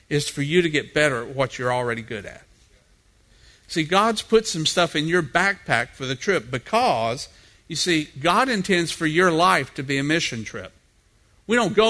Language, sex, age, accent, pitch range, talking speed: English, male, 50-69, American, 135-185 Hz, 195 wpm